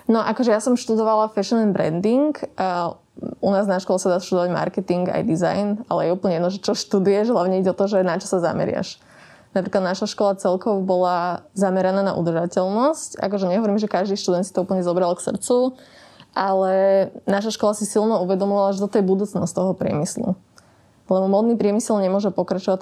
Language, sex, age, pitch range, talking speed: Slovak, female, 20-39, 180-205 Hz, 185 wpm